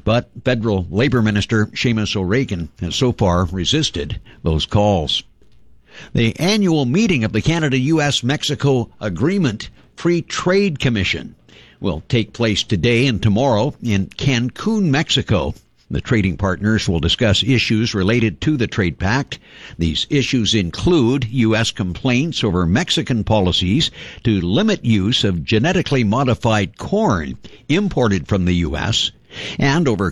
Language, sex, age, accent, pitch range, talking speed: English, male, 60-79, American, 100-140 Hz, 125 wpm